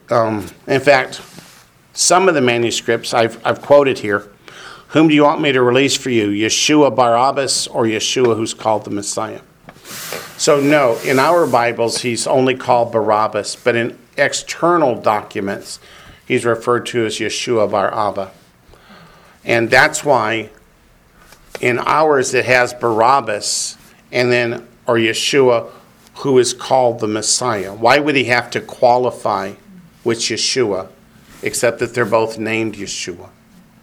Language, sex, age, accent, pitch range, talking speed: English, male, 50-69, American, 110-125 Hz, 140 wpm